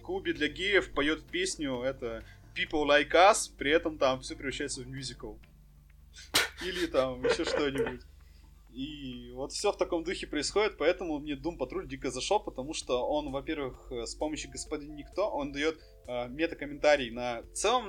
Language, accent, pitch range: Russian, native, 130-175 Hz